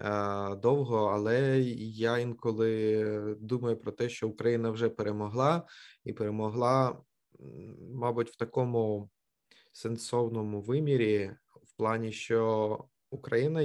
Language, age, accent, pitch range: Ukrainian, 20-39, native, 105-120 Hz